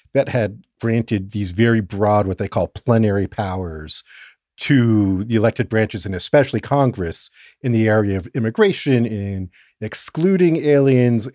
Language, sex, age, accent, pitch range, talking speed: English, male, 50-69, American, 100-135 Hz, 140 wpm